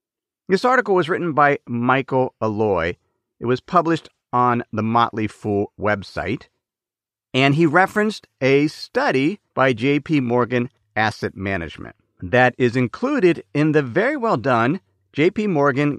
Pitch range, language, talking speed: 115-160 Hz, English, 130 wpm